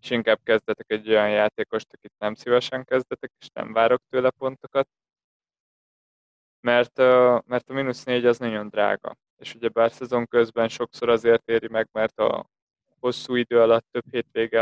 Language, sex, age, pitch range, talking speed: Hungarian, male, 20-39, 110-125 Hz, 155 wpm